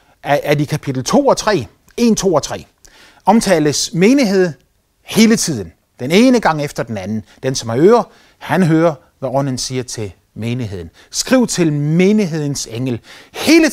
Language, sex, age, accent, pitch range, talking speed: Danish, male, 30-49, native, 135-200 Hz, 155 wpm